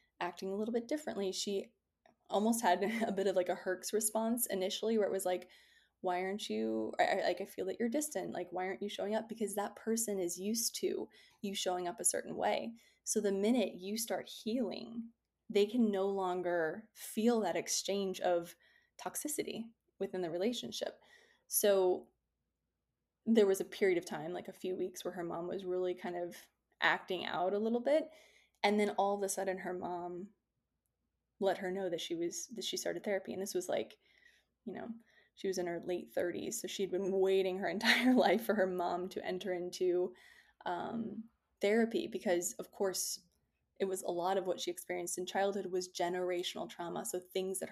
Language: English